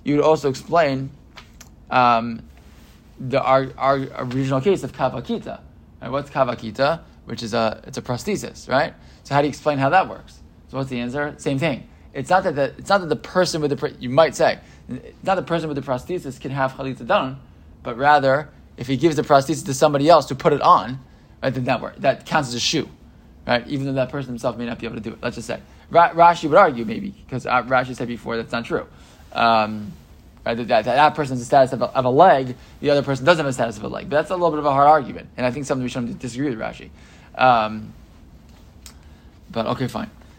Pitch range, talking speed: 120-150 Hz, 235 wpm